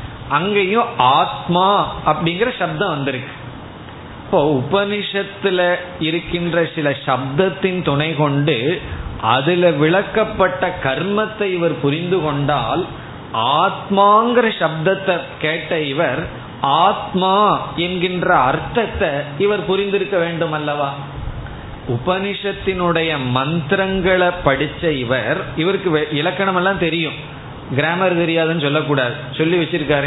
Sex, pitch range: male, 140-190 Hz